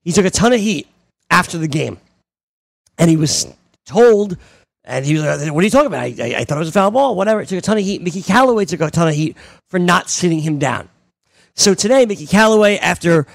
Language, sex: English, male